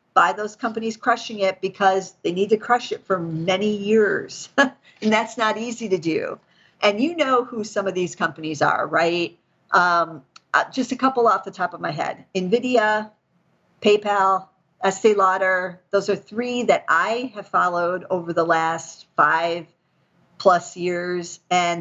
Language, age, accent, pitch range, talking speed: English, 50-69, American, 170-210 Hz, 160 wpm